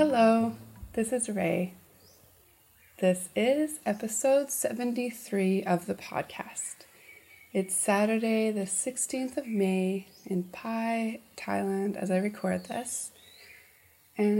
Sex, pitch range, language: female, 180-230 Hz, English